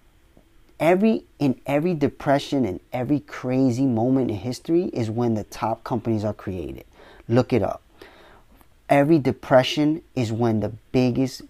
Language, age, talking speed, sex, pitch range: English, 30-49, 135 wpm, male, 115-155 Hz